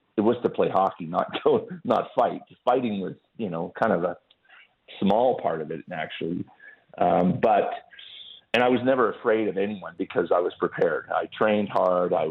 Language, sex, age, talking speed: English, male, 40-59, 185 wpm